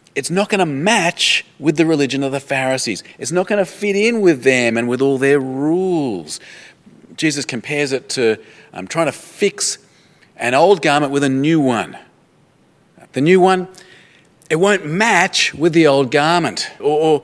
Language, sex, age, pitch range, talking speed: English, male, 40-59, 140-185 Hz, 175 wpm